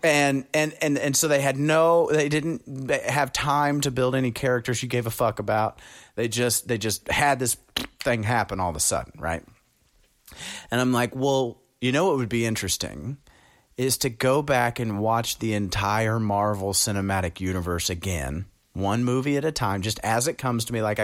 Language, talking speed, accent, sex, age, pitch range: English, 195 wpm, American, male, 30-49, 105-135 Hz